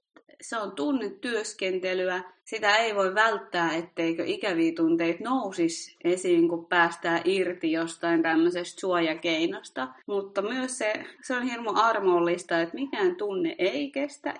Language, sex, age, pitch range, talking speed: Finnish, female, 20-39, 175-260 Hz, 125 wpm